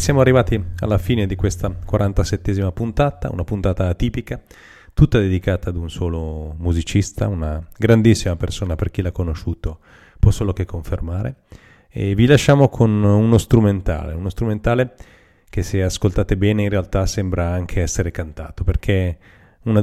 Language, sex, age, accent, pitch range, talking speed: Italian, male, 30-49, native, 90-105 Hz, 145 wpm